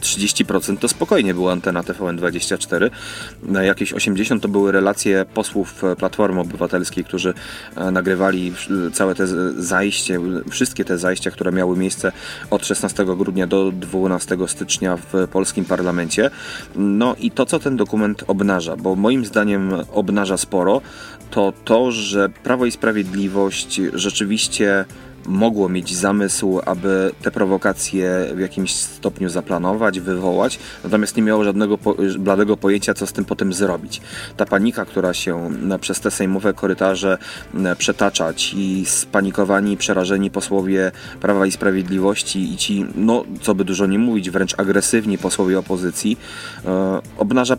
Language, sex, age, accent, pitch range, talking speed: Polish, male, 30-49, native, 95-100 Hz, 130 wpm